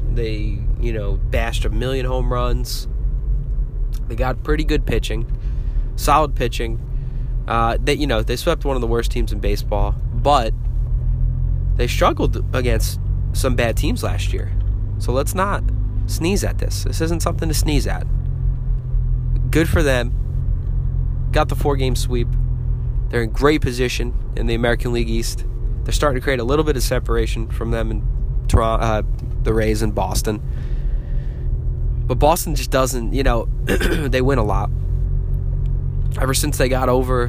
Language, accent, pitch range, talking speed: English, American, 110-125 Hz, 160 wpm